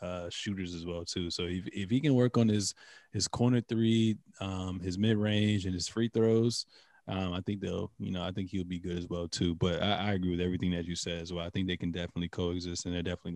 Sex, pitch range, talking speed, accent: male, 90-100 Hz, 255 wpm, American